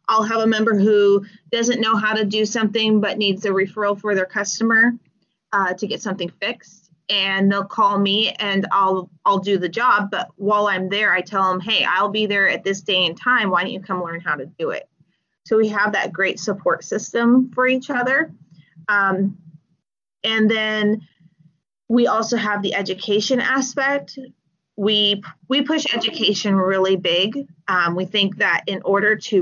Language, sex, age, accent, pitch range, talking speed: English, female, 30-49, American, 185-220 Hz, 185 wpm